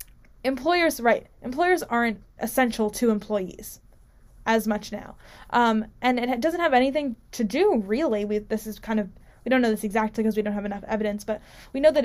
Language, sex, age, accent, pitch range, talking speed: English, female, 10-29, American, 205-230 Hz, 195 wpm